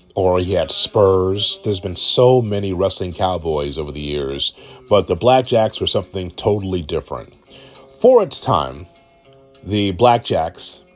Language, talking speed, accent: English, 135 wpm, American